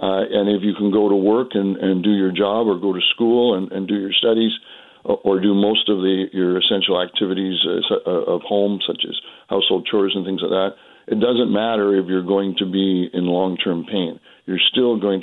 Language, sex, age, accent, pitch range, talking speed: English, male, 60-79, American, 95-110 Hz, 215 wpm